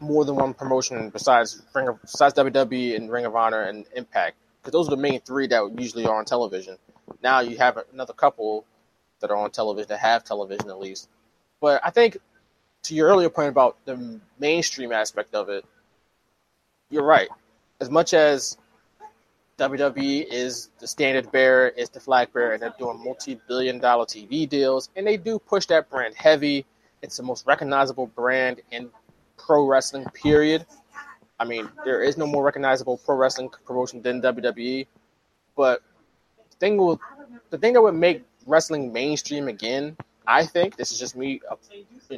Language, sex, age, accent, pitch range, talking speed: English, male, 20-39, American, 120-155 Hz, 170 wpm